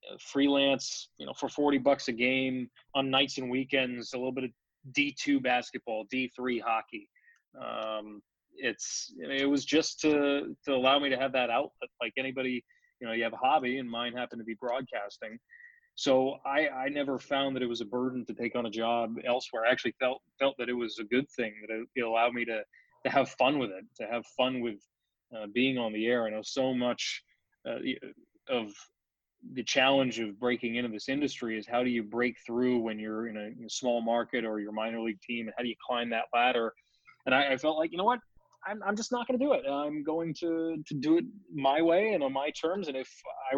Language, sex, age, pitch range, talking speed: English, male, 20-39, 120-150 Hz, 230 wpm